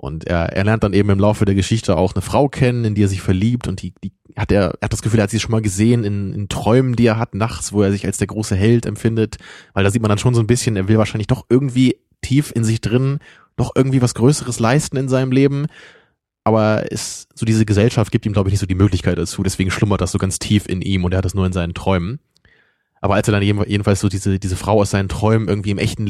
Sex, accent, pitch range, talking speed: male, German, 95-110 Hz, 280 wpm